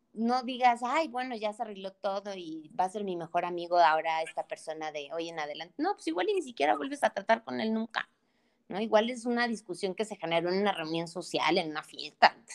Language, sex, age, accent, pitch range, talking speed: Spanish, female, 30-49, Mexican, 175-240 Hz, 240 wpm